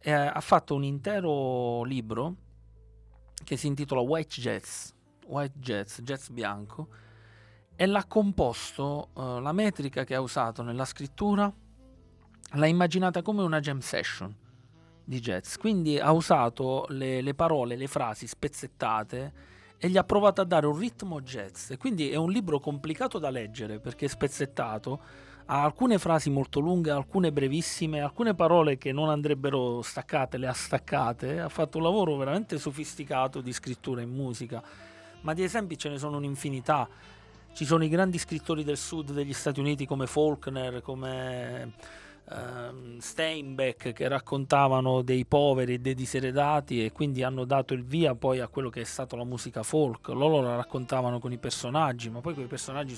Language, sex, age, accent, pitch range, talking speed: Italian, male, 30-49, native, 125-155 Hz, 160 wpm